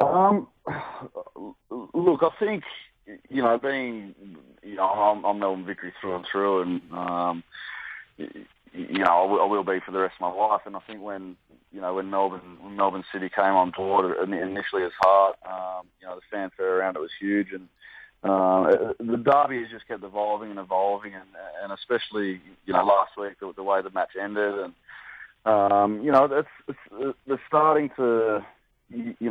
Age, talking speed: 30-49, 180 wpm